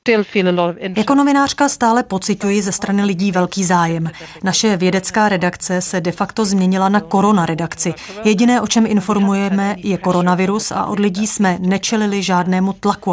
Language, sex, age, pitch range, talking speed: Czech, female, 30-49, 180-210 Hz, 140 wpm